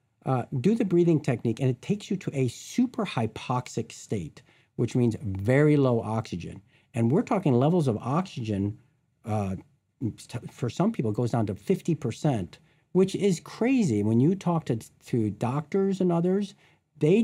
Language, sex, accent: English, male, American